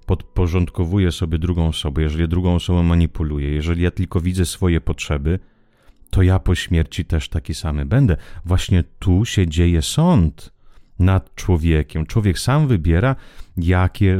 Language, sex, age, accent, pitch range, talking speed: Italian, male, 30-49, Polish, 80-105 Hz, 140 wpm